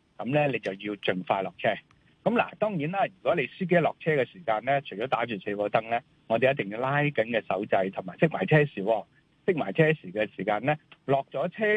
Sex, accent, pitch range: male, native, 115-165 Hz